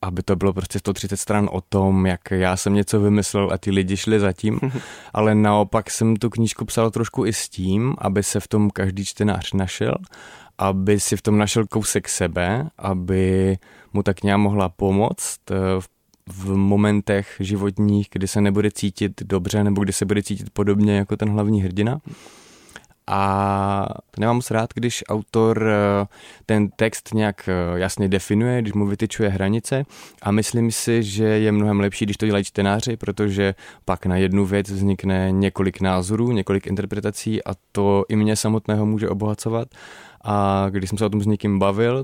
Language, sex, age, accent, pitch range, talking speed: Czech, male, 20-39, native, 95-105 Hz, 170 wpm